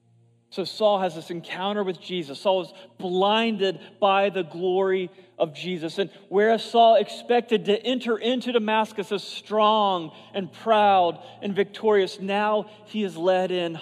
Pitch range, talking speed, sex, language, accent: 155-220 Hz, 150 wpm, male, English, American